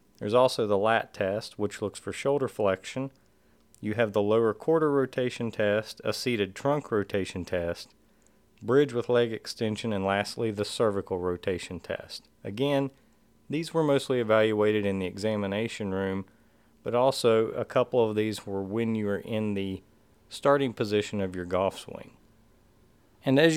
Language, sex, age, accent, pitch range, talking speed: English, male, 40-59, American, 100-125 Hz, 155 wpm